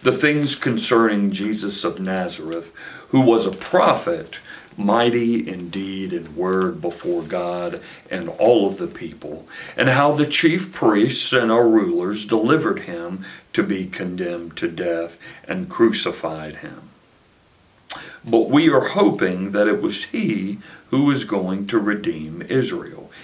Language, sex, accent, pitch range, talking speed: English, male, American, 90-115 Hz, 140 wpm